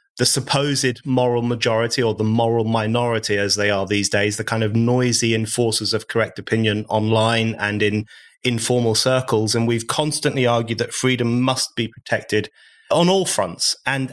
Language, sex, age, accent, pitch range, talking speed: English, male, 30-49, British, 115-140 Hz, 170 wpm